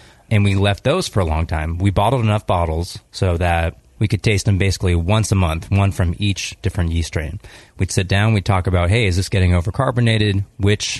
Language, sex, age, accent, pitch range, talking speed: English, male, 30-49, American, 90-105 Hz, 220 wpm